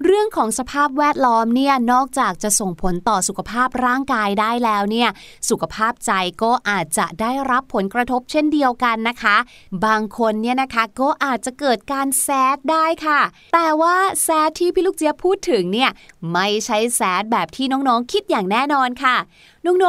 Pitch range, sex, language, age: 215-290 Hz, female, Thai, 20-39